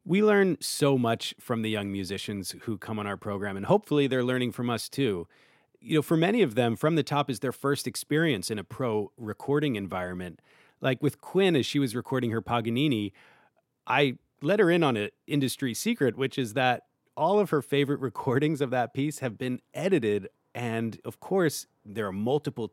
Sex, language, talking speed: male, English, 200 wpm